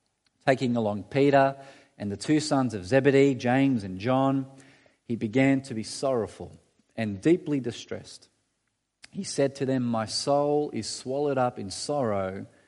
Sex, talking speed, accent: male, 145 wpm, Australian